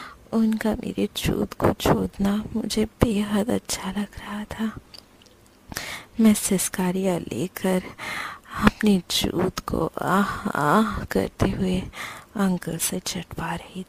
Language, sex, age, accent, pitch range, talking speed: Hindi, female, 30-49, native, 180-200 Hz, 110 wpm